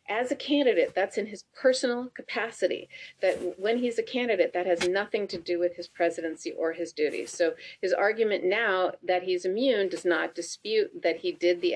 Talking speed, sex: 195 wpm, female